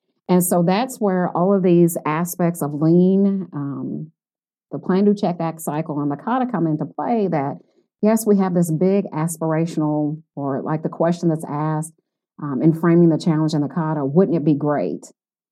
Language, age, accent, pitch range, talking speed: English, 40-59, American, 155-195 Hz, 185 wpm